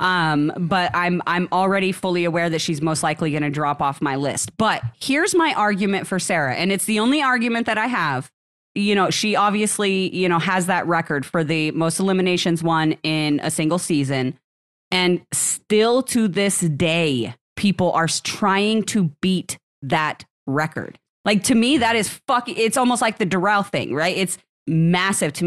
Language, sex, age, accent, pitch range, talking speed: English, female, 30-49, American, 165-205 Hz, 180 wpm